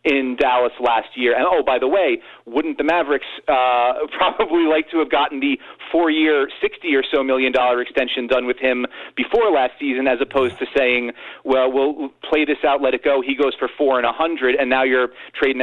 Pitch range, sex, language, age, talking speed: 125-160 Hz, male, English, 40-59, 215 wpm